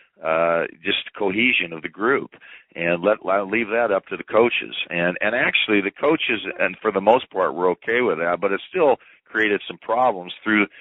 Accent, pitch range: American, 85-100 Hz